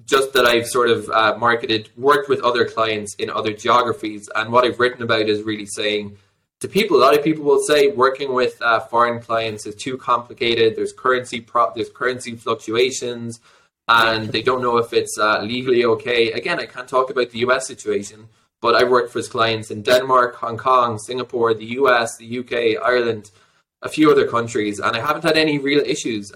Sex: male